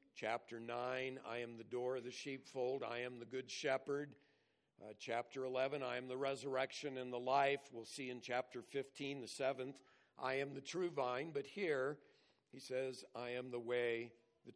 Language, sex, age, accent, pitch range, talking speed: English, male, 50-69, American, 120-145 Hz, 185 wpm